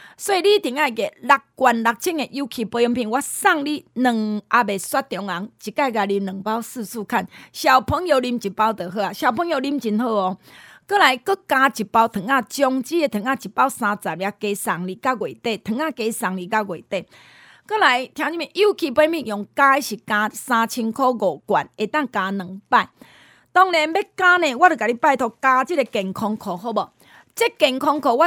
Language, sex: Chinese, female